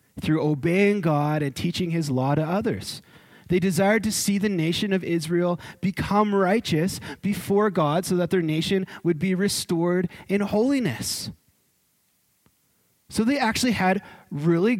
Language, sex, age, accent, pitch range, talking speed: English, male, 30-49, American, 125-185 Hz, 140 wpm